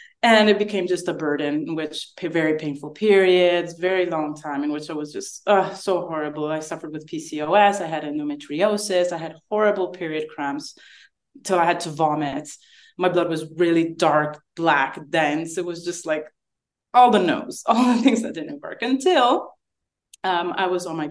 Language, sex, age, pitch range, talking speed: English, female, 20-39, 160-215 Hz, 185 wpm